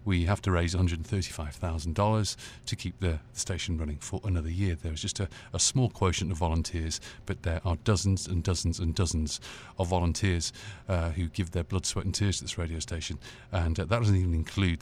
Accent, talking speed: British, 200 wpm